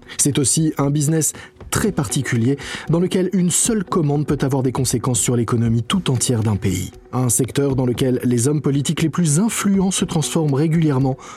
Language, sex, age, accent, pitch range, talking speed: French, male, 20-39, French, 120-160 Hz, 180 wpm